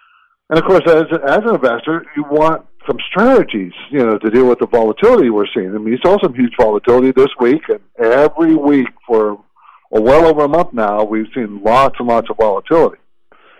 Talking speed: 205 wpm